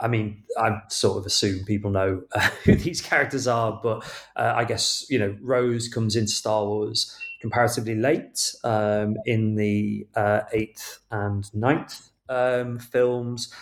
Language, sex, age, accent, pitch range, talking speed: English, male, 30-49, British, 105-120 Hz, 155 wpm